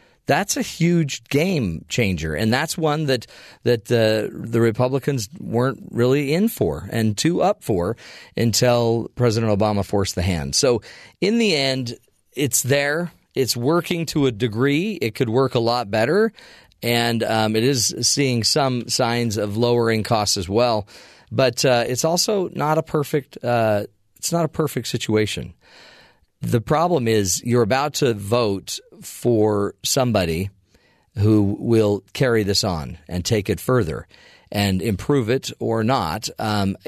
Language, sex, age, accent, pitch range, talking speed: English, male, 40-59, American, 105-140 Hz, 155 wpm